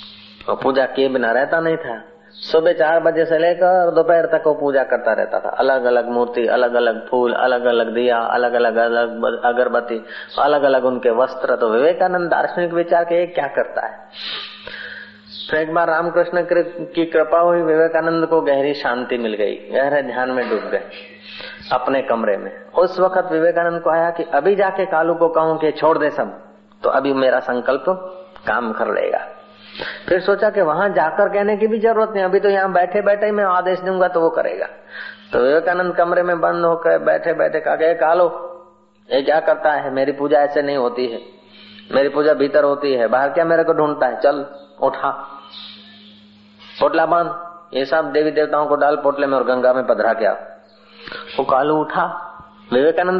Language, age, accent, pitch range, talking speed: Hindi, 30-49, native, 130-175 Hz, 140 wpm